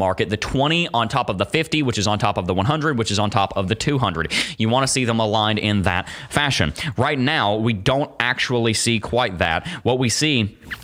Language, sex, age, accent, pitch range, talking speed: English, male, 20-39, American, 105-125 Hz, 235 wpm